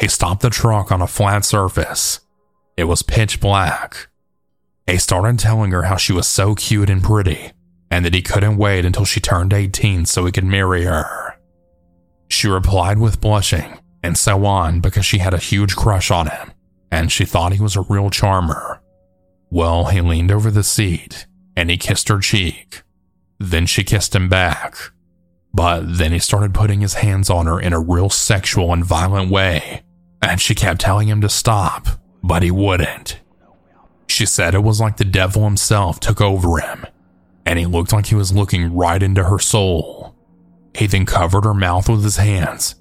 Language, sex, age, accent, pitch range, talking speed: English, male, 20-39, American, 85-105 Hz, 185 wpm